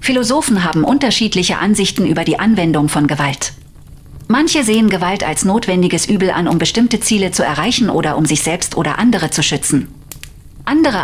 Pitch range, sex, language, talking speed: 165-215 Hz, female, German, 165 wpm